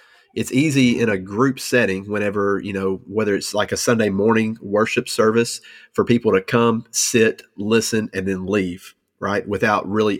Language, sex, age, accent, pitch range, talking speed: English, male, 30-49, American, 100-115 Hz, 170 wpm